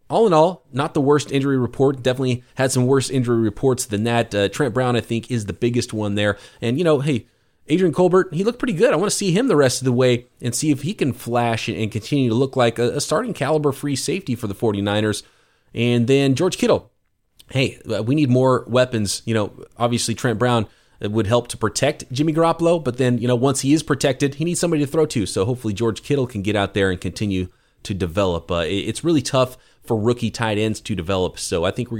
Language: English